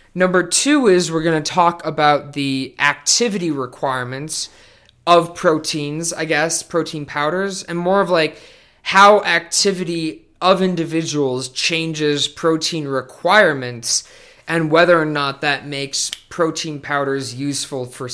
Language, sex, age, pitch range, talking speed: English, male, 20-39, 140-170 Hz, 125 wpm